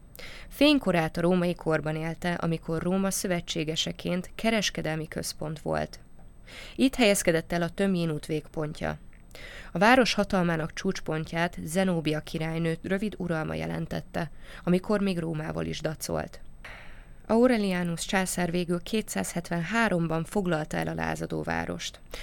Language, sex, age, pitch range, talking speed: Hungarian, female, 20-39, 160-190 Hz, 110 wpm